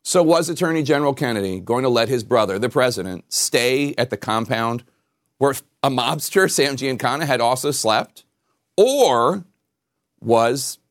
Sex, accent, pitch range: male, American, 105-130 Hz